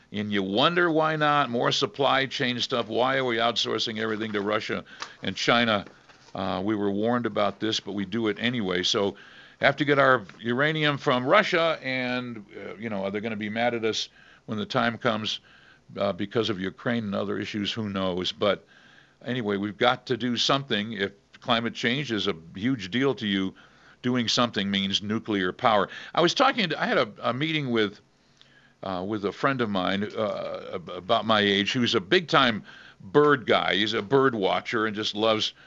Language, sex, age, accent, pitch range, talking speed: English, male, 50-69, American, 105-140 Hz, 195 wpm